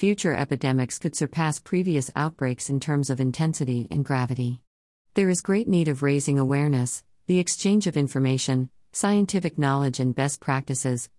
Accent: American